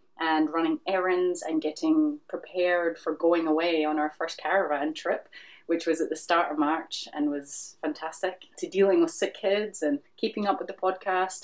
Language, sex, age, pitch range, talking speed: English, female, 30-49, 155-195 Hz, 185 wpm